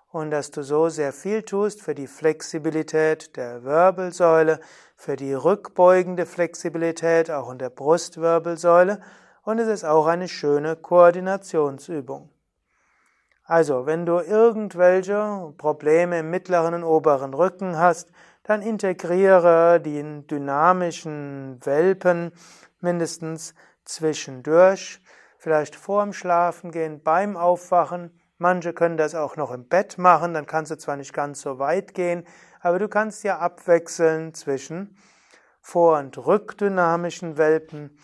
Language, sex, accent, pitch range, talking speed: German, male, German, 155-180 Hz, 125 wpm